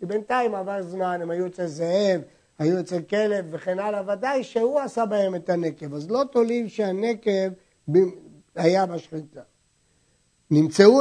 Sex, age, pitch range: male, 60-79, 170-230 Hz